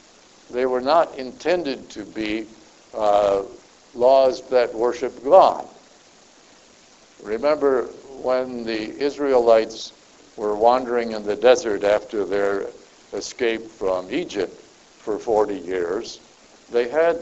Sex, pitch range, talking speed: male, 105-130 Hz, 105 wpm